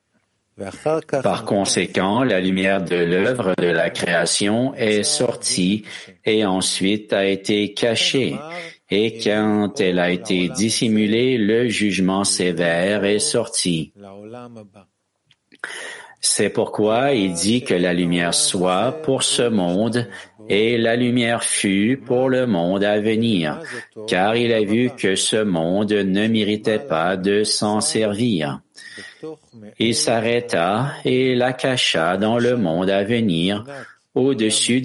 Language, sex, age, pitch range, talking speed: English, male, 50-69, 95-120 Hz, 120 wpm